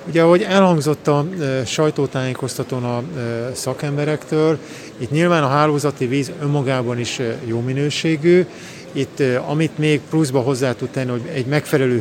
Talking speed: 130 wpm